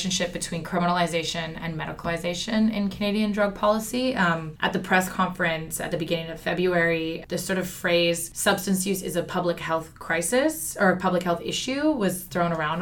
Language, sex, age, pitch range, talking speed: English, female, 20-39, 165-190 Hz, 170 wpm